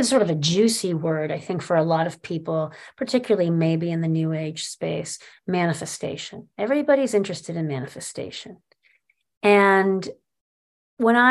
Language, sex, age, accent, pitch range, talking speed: English, female, 40-59, American, 165-220 Hz, 140 wpm